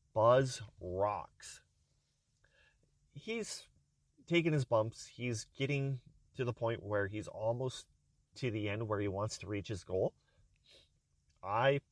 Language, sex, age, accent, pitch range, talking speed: English, male, 30-49, American, 100-140 Hz, 125 wpm